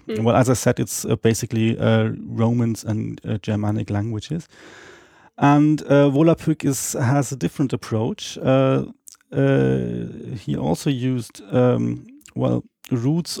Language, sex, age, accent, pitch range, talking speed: English, male, 30-49, German, 115-140 Hz, 125 wpm